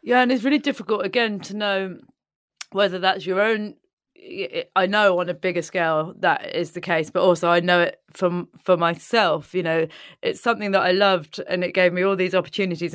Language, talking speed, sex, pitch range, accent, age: English, 205 wpm, female, 175-210 Hz, British, 20-39